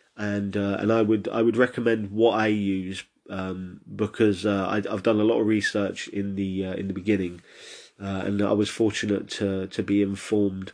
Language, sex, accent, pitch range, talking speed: English, male, British, 100-115 Hz, 200 wpm